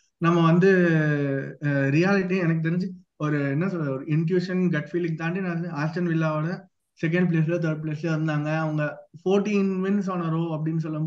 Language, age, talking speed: Tamil, 20-39, 105 wpm